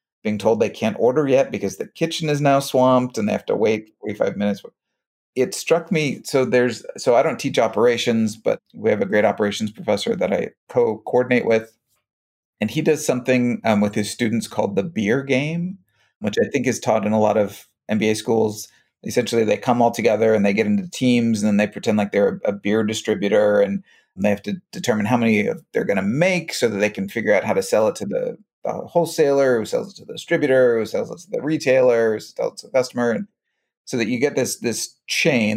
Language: English